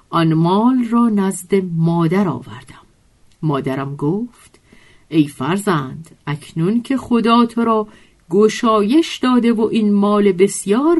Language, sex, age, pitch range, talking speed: Persian, female, 50-69, 165-250 Hz, 115 wpm